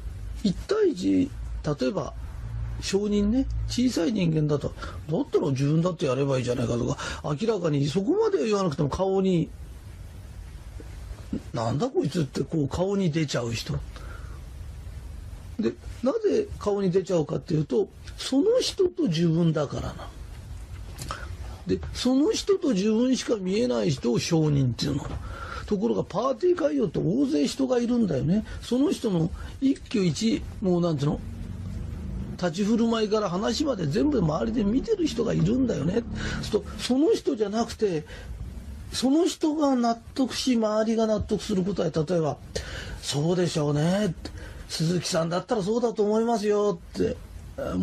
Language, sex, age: Japanese, male, 40-59